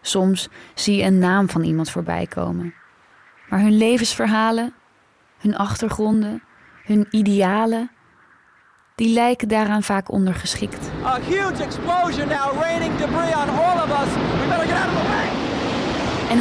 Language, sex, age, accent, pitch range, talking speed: Dutch, female, 20-39, Dutch, 185-235 Hz, 80 wpm